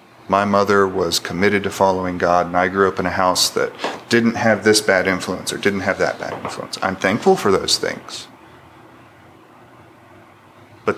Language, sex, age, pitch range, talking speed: English, male, 40-59, 100-135 Hz, 175 wpm